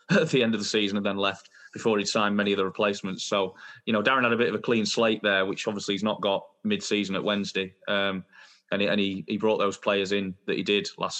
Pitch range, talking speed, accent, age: 95-110 Hz, 275 wpm, British, 20-39